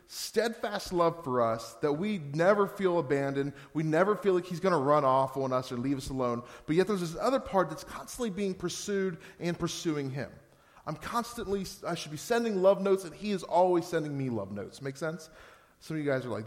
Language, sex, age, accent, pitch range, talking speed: English, male, 30-49, American, 120-170 Hz, 220 wpm